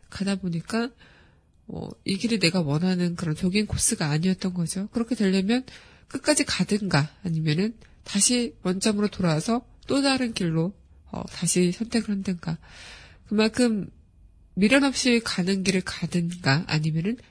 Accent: native